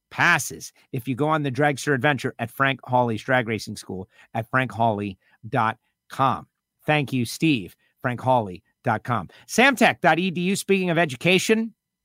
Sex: male